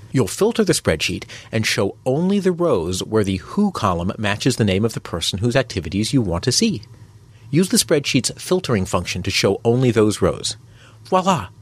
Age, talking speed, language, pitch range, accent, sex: 40-59, 185 wpm, English, 100-125 Hz, American, male